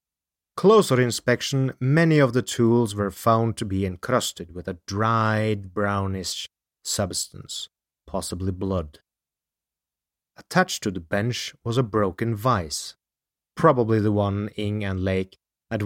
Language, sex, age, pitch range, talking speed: English, male, 30-49, 90-125 Hz, 125 wpm